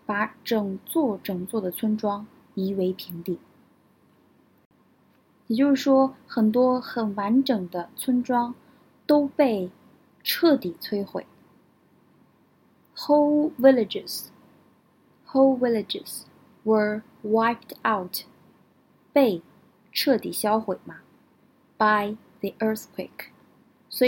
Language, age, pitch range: Chinese, 20-39, 200-265 Hz